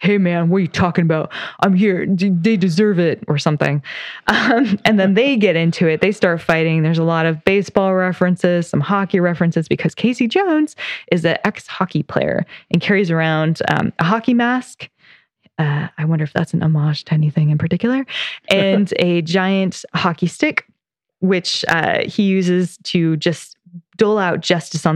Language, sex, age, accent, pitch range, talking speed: English, female, 20-39, American, 170-200 Hz, 175 wpm